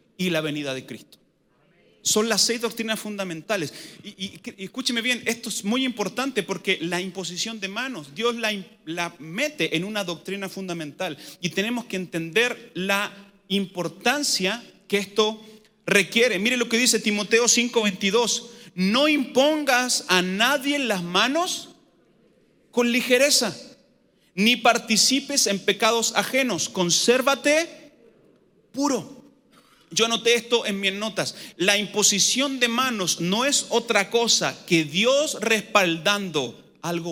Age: 30-49